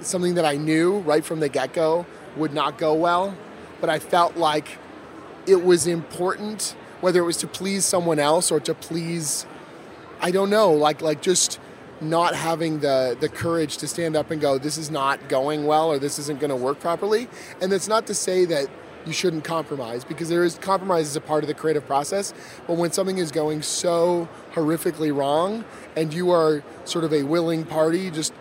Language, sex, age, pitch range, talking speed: English, male, 30-49, 150-180 Hz, 195 wpm